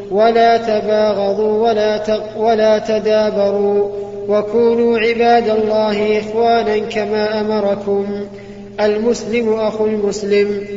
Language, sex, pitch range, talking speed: Arabic, male, 205-220 Hz, 80 wpm